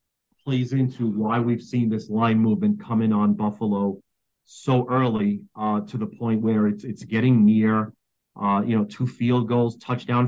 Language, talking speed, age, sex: English, 170 wpm, 40-59, male